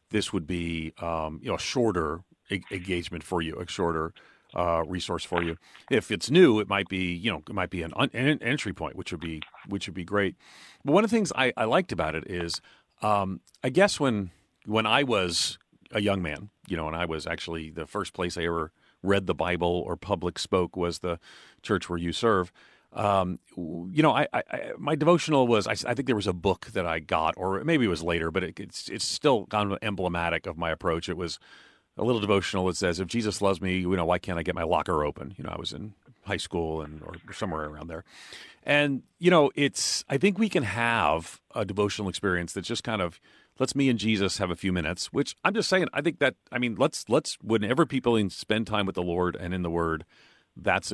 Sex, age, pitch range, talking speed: male, 40-59, 85-110 Hz, 235 wpm